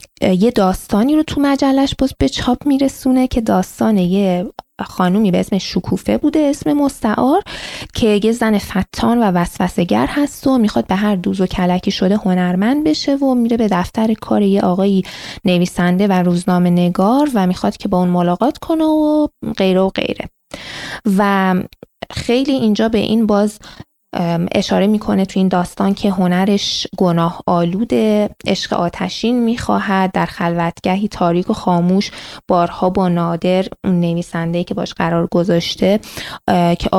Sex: female